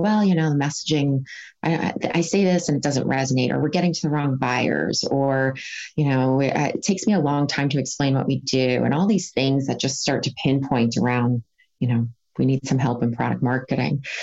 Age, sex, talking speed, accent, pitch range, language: 30-49, female, 230 wpm, American, 130-155 Hz, English